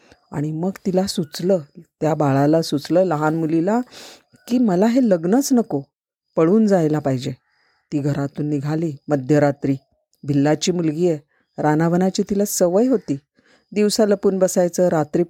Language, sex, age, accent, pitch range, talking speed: Marathi, female, 40-59, native, 150-195 Hz, 125 wpm